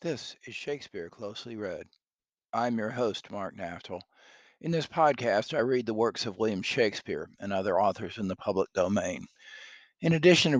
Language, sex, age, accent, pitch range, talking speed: English, male, 50-69, American, 100-140 Hz, 170 wpm